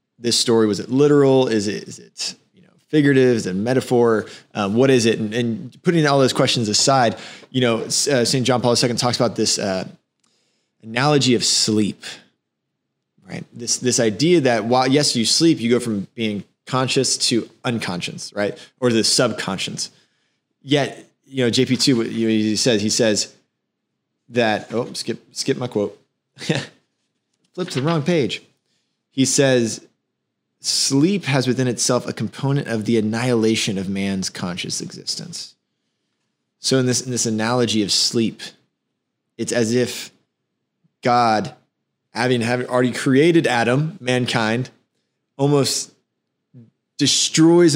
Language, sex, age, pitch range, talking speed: English, male, 20-39, 110-135 Hz, 145 wpm